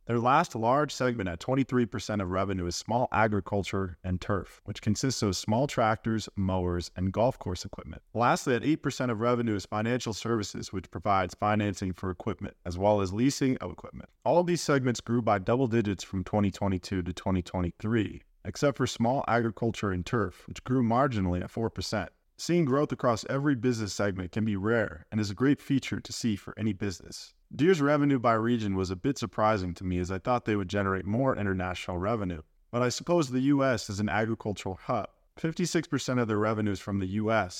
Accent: American